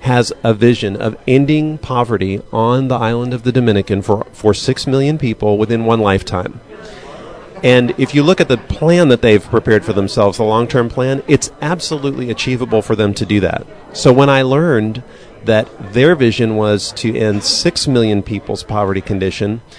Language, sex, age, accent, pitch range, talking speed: English, male, 40-59, American, 105-130 Hz, 175 wpm